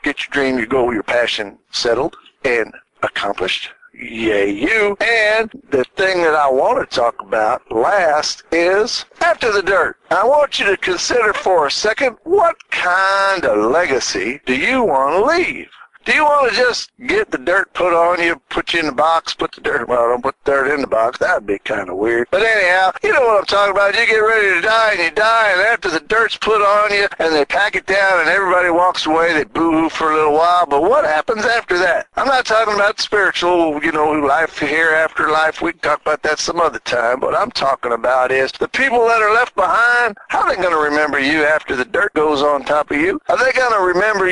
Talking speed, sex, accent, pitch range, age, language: 225 wpm, male, American, 160-220 Hz, 60-79, English